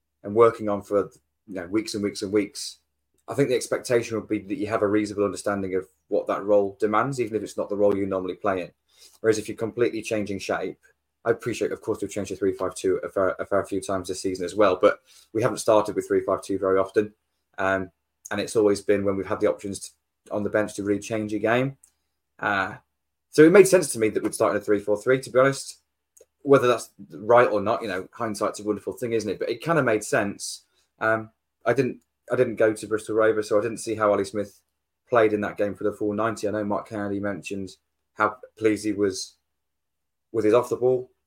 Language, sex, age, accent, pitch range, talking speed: English, male, 20-39, British, 95-115 Hz, 235 wpm